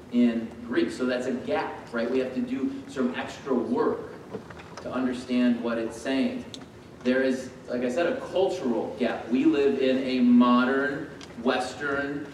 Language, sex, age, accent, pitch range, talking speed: English, male, 30-49, American, 125-160 Hz, 160 wpm